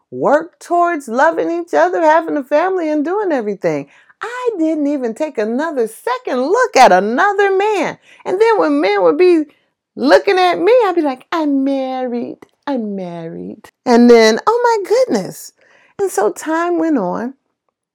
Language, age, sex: English, 30-49, female